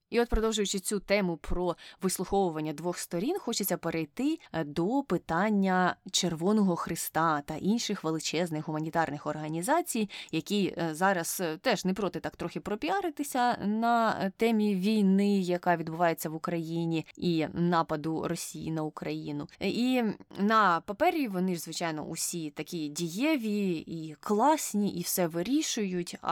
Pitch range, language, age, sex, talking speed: 165-215 Hz, Ukrainian, 20-39, female, 125 wpm